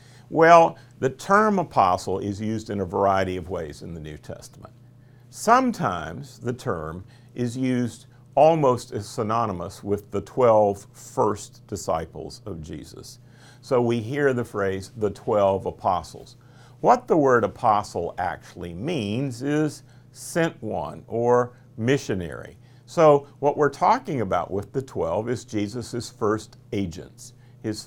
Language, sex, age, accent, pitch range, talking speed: English, male, 50-69, American, 110-135 Hz, 135 wpm